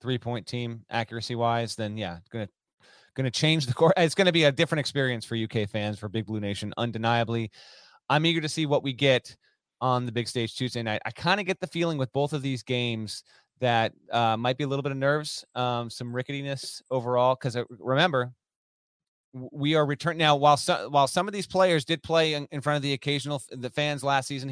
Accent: American